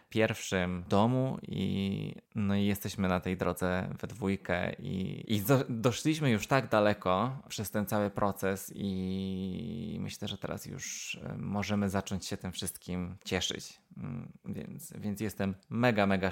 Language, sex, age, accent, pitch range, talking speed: Polish, male, 20-39, native, 95-105 Hz, 130 wpm